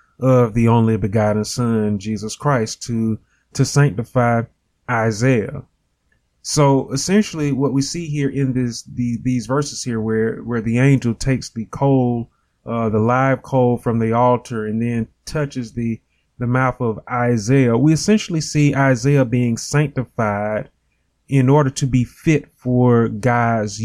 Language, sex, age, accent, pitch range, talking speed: English, male, 20-39, American, 115-140 Hz, 145 wpm